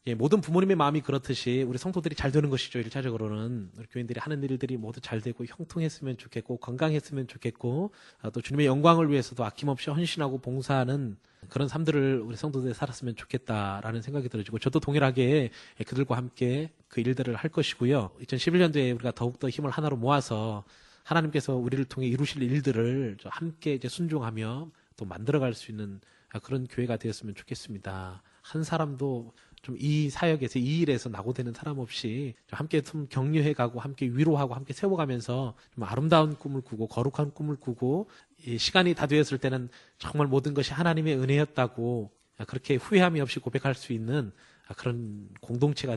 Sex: male